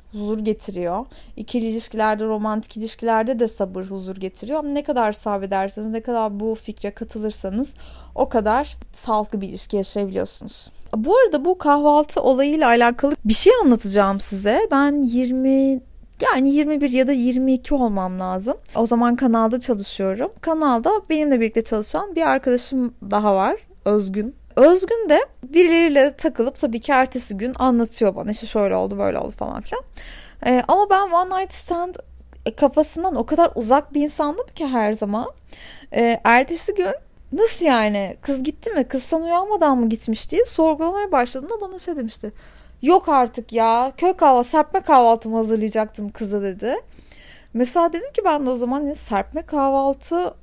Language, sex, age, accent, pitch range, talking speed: Turkish, female, 30-49, native, 220-300 Hz, 150 wpm